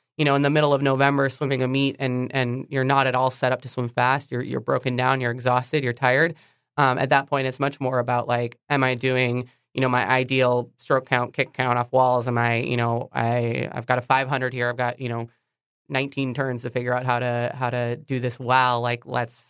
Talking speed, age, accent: 245 wpm, 20-39, American